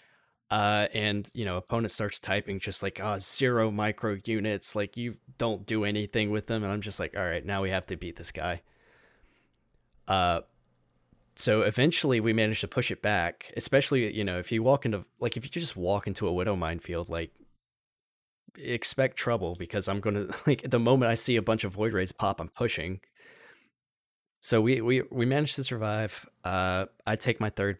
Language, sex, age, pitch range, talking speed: English, male, 20-39, 95-115 Hz, 190 wpm